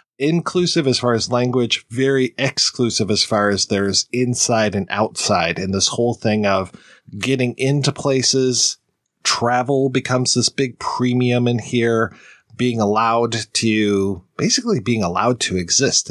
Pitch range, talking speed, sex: 105-125 Hz, 140 wpm, male